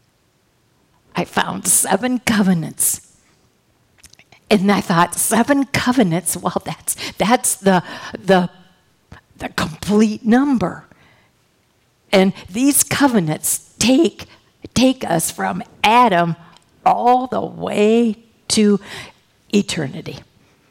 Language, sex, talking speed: English, female, 85 wpm